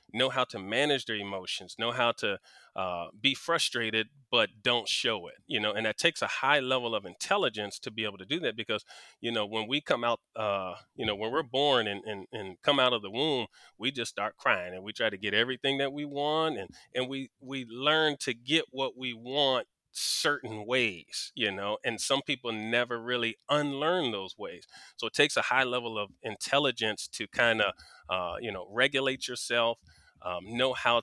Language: English